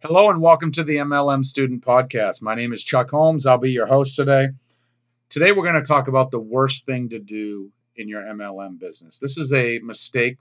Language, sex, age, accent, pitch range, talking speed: English, male, 40-59, American, 110-130 Hz, 215 wpm